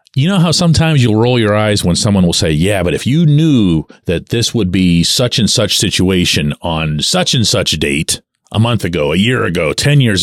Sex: male